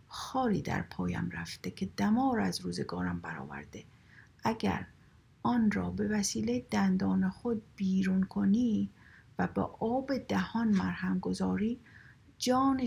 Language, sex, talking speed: Persian, female, 115 wpm